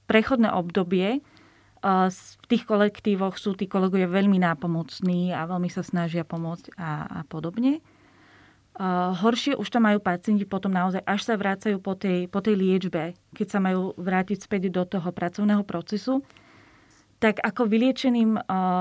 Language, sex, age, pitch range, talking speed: Slovak, female, 30-49, 180-210 Hz, 145 wpm